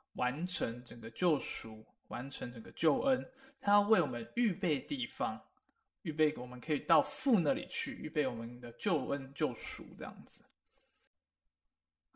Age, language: 20-39, Chinese